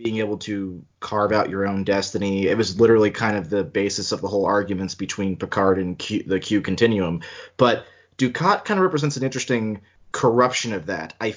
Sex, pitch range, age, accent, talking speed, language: male, 100-125 Hz, 30-49, American, 195 wpm, English